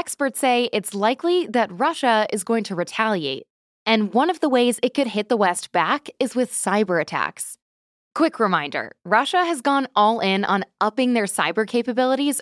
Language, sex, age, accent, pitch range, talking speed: English, female, 10-29, American, 180-270 Hz, 180 wpm